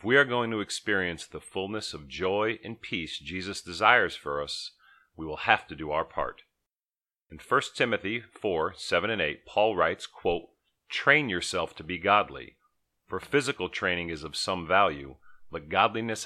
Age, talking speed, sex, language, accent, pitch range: 40-59, 175 wpm, male, English, American, 85-110 Hz